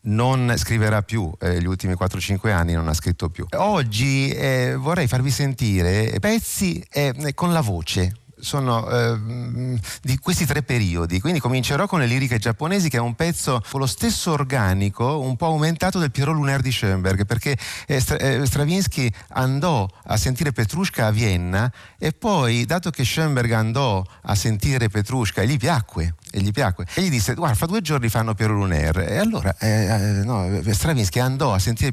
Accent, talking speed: native, 180 wpm